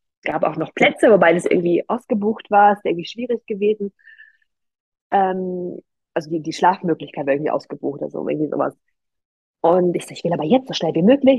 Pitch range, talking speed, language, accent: 185-245 Hz, 195 wpm, German, German